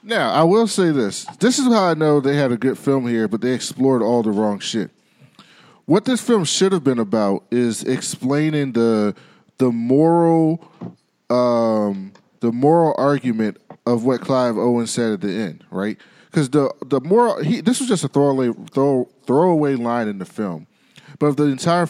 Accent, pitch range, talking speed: American, 120-165 Hz, 185 wpm